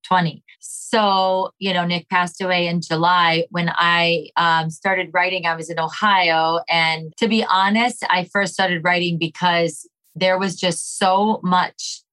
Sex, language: female, English